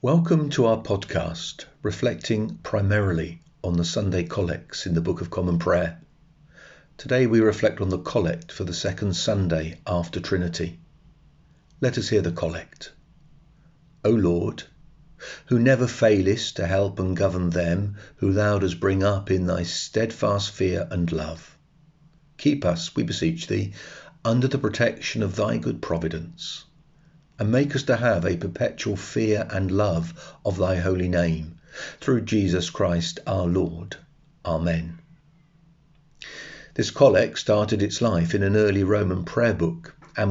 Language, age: English, 50-69